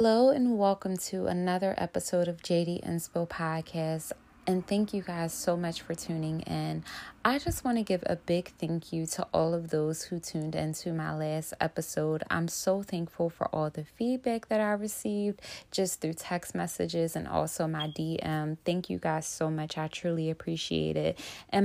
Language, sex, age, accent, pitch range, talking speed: English, female, 20-39, American, 155-185 Hz, 185 wpm